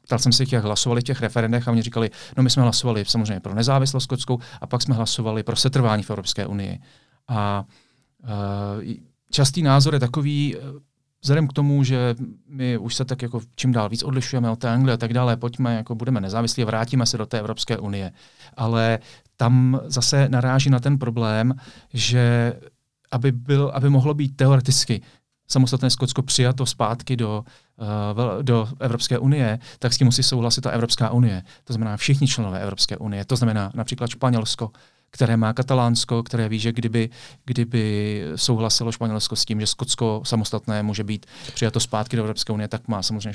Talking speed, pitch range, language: 180 wpm, 110-130 Hz, Czech